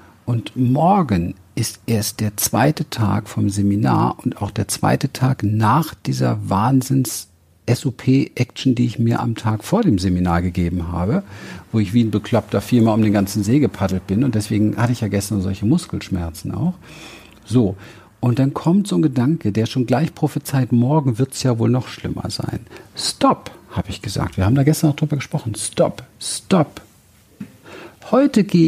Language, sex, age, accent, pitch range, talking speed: German, male, 50-69, German, 100-140 Hz, 170 wpm